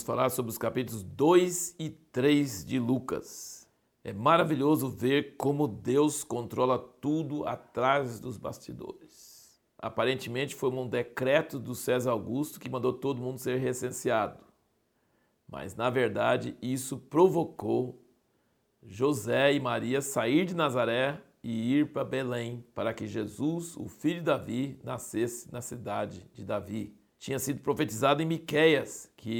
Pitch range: 120-145 Hz